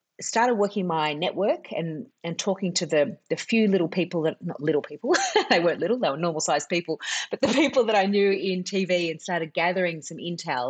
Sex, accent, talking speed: female, Australian, 215 wpm